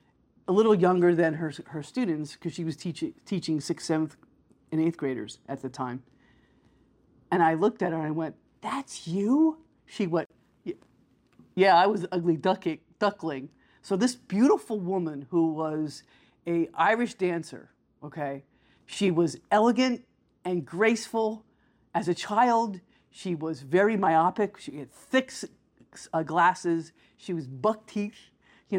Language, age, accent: English, 50-69, American